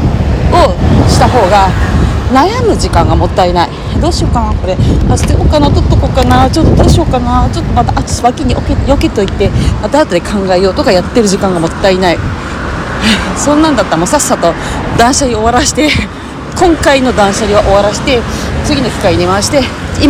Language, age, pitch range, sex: Japanese, 40-59, 165-255 Hz, female